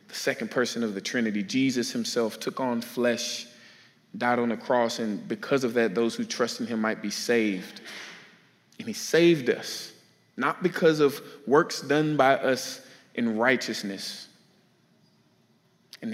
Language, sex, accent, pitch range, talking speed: English, male, American, 115-150 Hz, 150 wpm